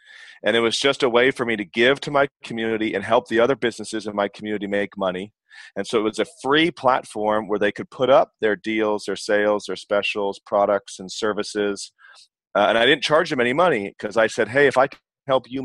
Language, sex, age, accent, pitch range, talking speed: English, male, 30-49, American, 100-125 Hz, 235 wpm